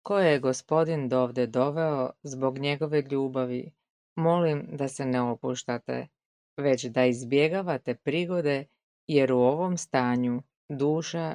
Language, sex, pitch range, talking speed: Croatian, female, 125-155 Hz, 115 wpm